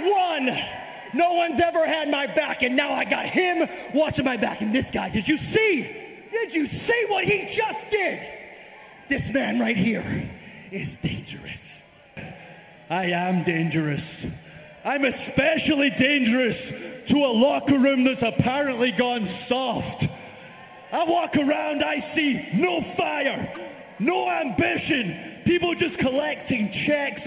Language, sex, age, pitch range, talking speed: English, male, 30-49, 215-295 Hz, 135 wpm